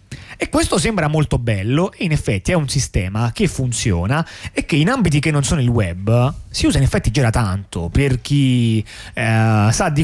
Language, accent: Italian, native